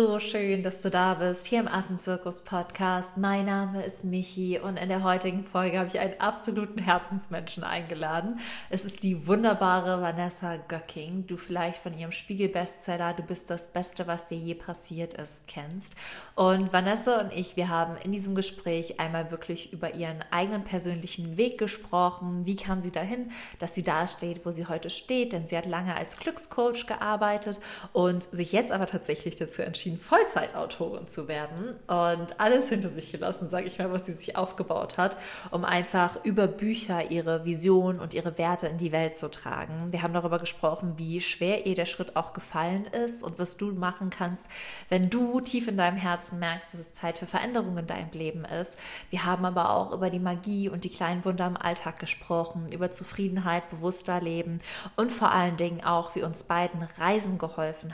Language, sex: German, female